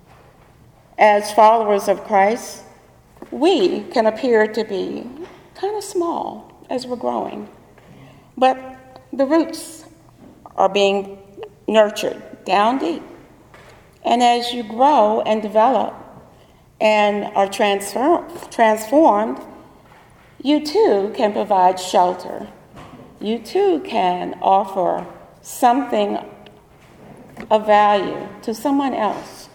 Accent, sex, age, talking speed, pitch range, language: American, female, 50-69, 95 wpm, 200-275 Hz, English